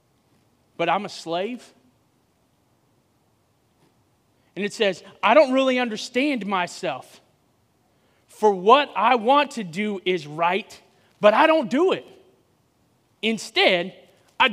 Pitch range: 210-290 Hz